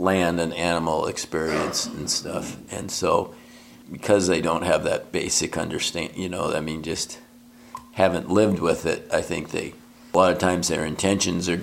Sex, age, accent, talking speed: male, 50-69, American, 175 wpm